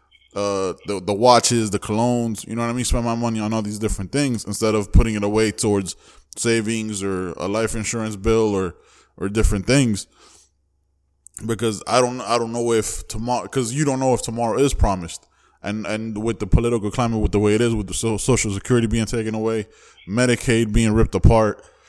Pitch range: 100-120 Hz